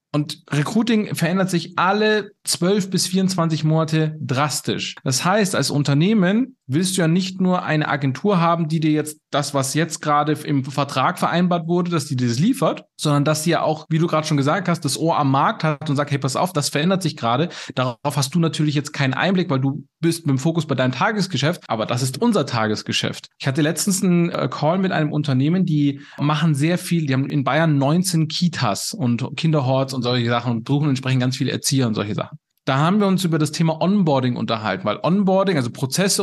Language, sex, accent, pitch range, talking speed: German, male, German, 135-175 Hz, 215 wpm